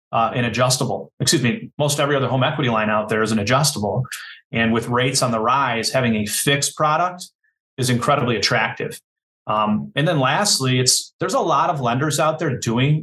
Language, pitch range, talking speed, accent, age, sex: English, 115-140 Hz, 195 wpm, American, 30-49, male